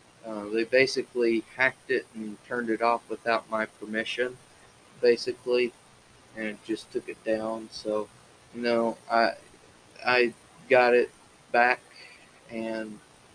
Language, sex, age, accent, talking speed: English, male, 30-49, American, 120 wpm